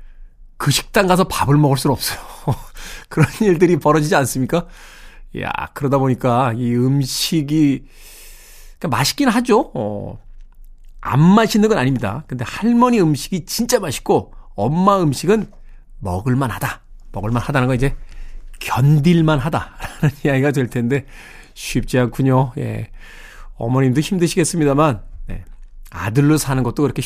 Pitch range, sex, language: 130-200 Hz, male, Korean